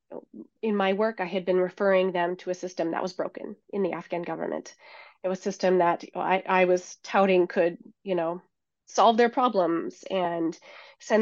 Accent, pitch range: American, 180-210 Hz